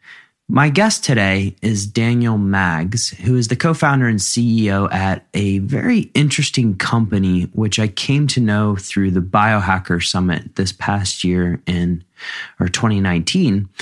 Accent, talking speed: American, 140 wpm